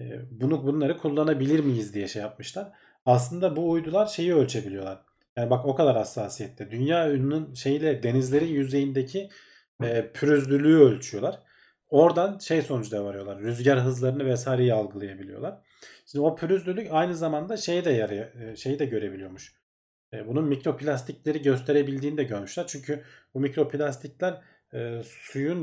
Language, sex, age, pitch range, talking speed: Turkish, male, 40-59, 120-150 Hz, 130 wpm